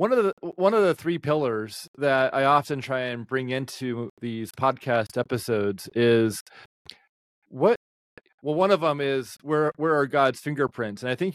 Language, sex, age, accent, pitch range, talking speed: English, male, 30-49, American, 115-145 Hz, 175 wpm